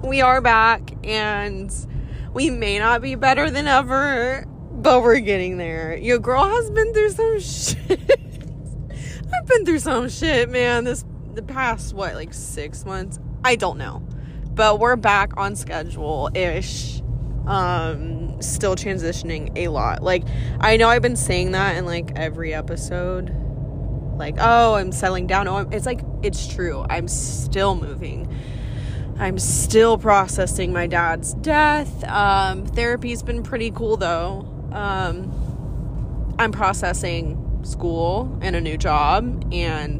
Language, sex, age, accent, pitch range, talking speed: English, female, 20-39, American, 135-225 Hz, 140 wpm